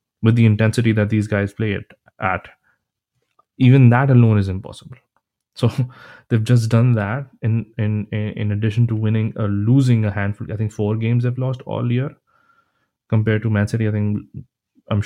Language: English